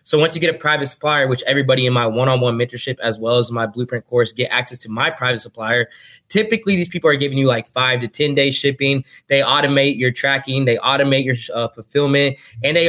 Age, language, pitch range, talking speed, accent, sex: 20-39, English, 125-155 Hz, 235 wpm, American, male